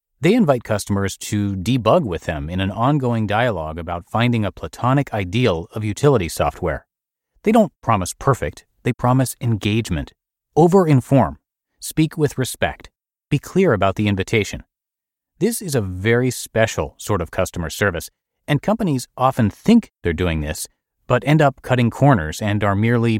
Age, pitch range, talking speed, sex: 30-49, 100-140 Hz, 155 wpm, male